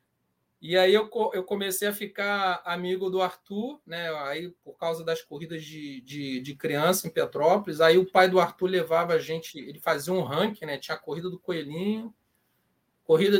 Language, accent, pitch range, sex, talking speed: Portuguese, Brazilian, 165-205 Hz, male, 180 wpm